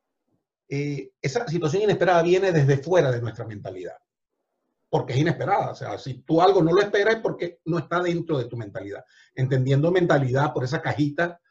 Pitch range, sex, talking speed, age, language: 135-220 Hz, male, 175 wpm, 40-59, Spanish